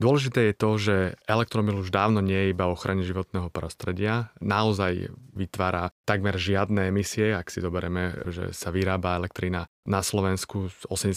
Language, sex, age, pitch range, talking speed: Slovak, male, 30-49, 90-105 Hz, 150 wpm